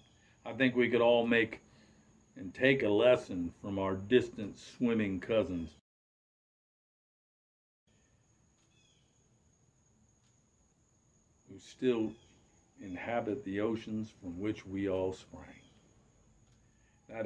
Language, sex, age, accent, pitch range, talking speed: English, male, 50-69, American, 100-120 Hz, 90 wpm